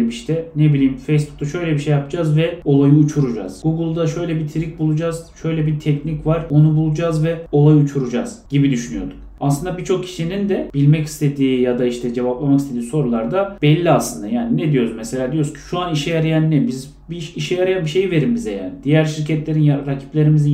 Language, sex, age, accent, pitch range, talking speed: Turkish, male, 30-49, native, 140-170 Hz, 195 wpm